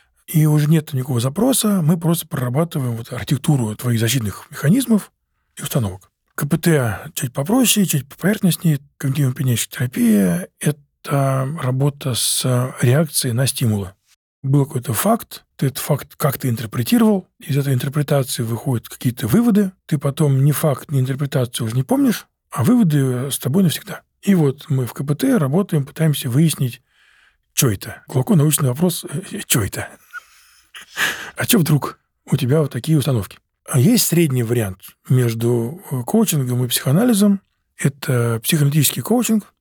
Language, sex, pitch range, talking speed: Russian, male, 130-170 Hz, 140 wpm